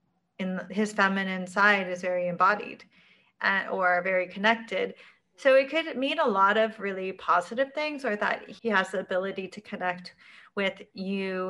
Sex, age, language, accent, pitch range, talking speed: female, 30-49, English, American, 195-245 Hz, 160 wpm